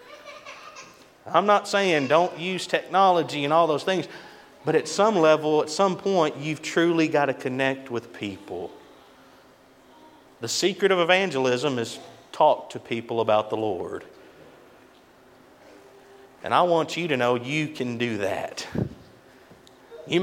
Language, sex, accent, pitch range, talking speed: English, male, American, 130-180 Hz, 135 wpm